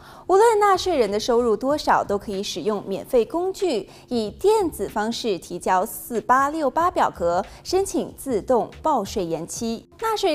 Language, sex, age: Chinese, female, 20-39